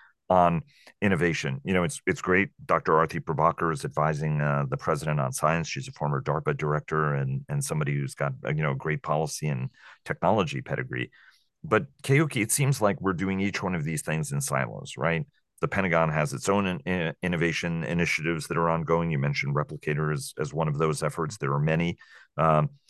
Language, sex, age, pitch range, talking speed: English, male, 40-59, 75-120 Hz, 190 wpm